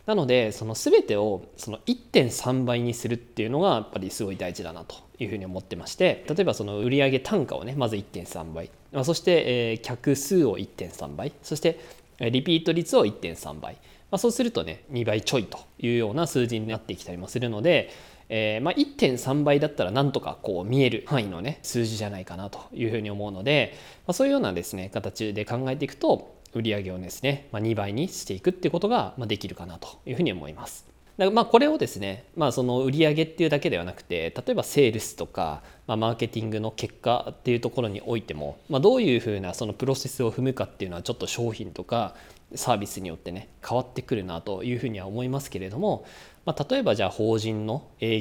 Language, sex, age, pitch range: Japanese, male, 20-39, 105-135 Hz